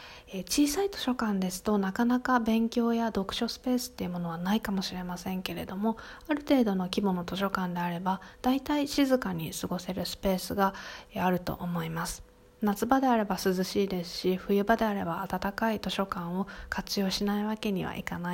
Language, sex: Japanese, female